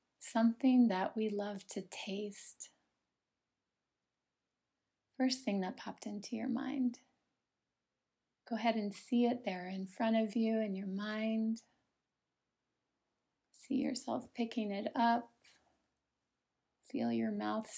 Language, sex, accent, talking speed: English, female, American, 115 wpm